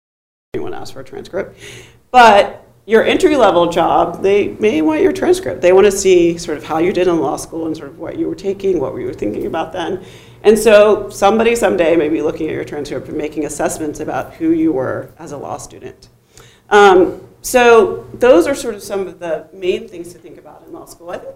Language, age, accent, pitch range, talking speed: English, 40-59, American, 170-235 Hz, 225 wpm